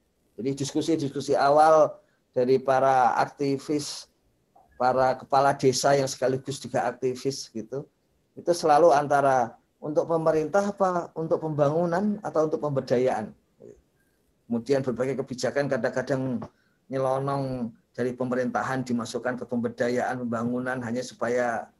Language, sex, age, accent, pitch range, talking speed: Indonesian, male, 40-59, native, 130-165 Hz, 105 wpm